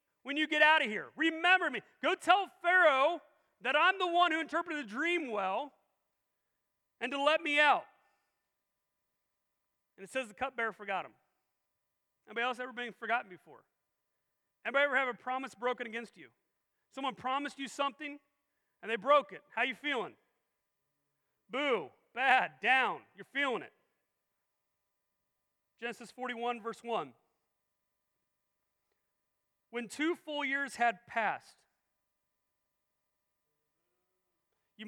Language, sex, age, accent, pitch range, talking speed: English, male, 40-59, American, 245-330 Hz, 130 wpm